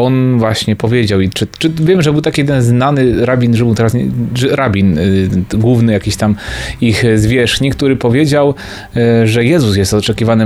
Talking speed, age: 185 wpm, 30-49